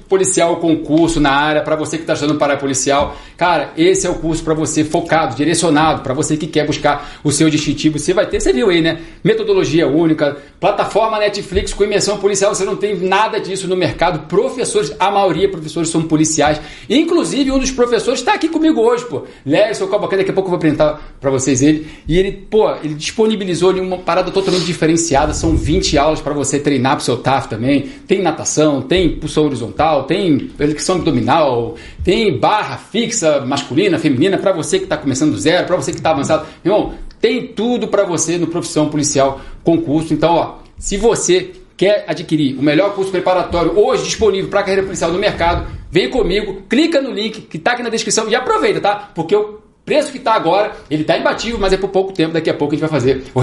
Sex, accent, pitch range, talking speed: male, Brazilian, 150-205 Hz, 205 wpm